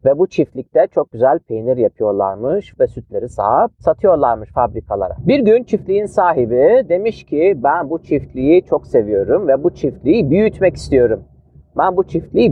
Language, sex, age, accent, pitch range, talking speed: Turkish, male, 40-59, native, 130-205 Hz, 145 wpm